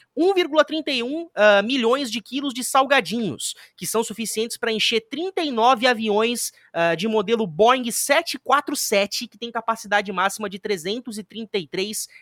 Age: 20-39